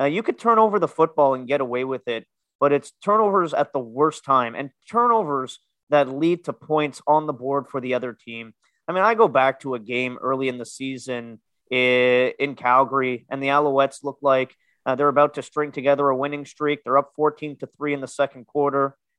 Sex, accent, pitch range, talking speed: male, American, 125-155 Hz, 215 wpm